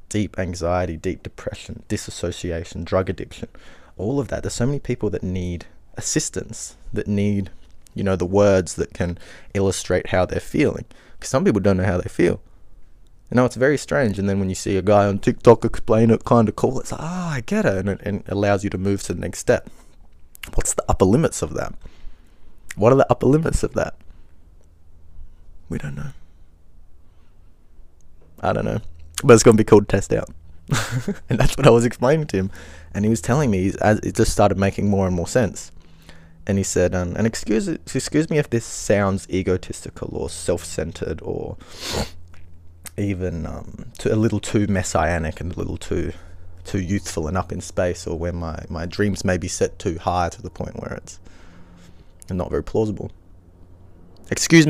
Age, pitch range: 20-39, 85-105 Hz